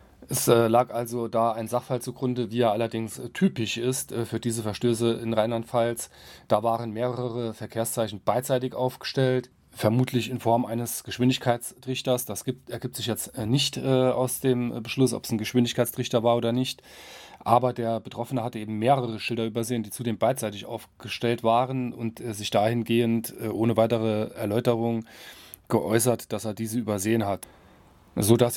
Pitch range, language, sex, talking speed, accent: 110-125 Hz, German, male, 150 wpm, German